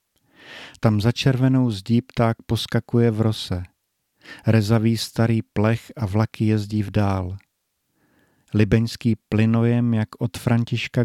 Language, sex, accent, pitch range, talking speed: Czech, male, native, 105-115 Hz, 115 wpm